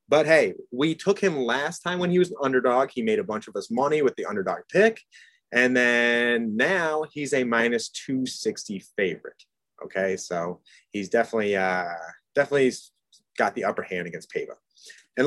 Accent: American